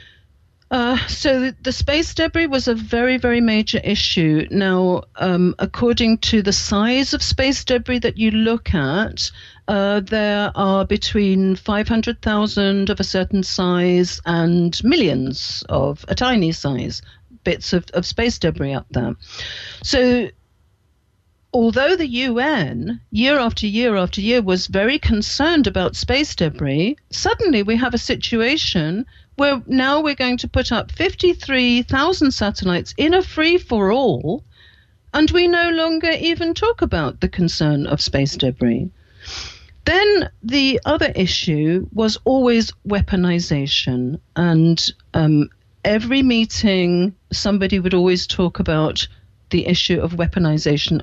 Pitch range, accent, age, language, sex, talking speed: 170-255 Hz, British, 50-69, English, female, 130 wpm